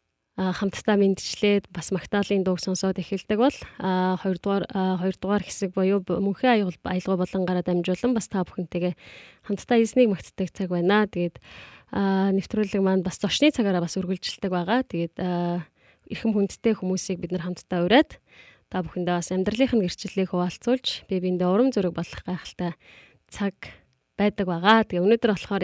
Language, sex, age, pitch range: Korean, female, 20-39, 180-210 Hz